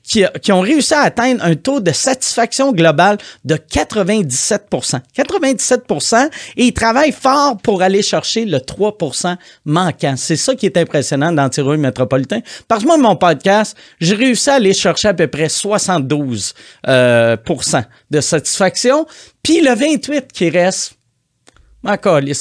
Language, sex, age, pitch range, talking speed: French, male, 30-49, 155-225 Hz, 150 wpm